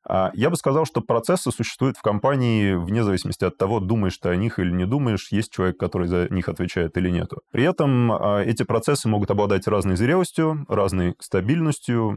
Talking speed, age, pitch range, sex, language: 180 wpm, 20-39, 90-110 Hz, male, Russian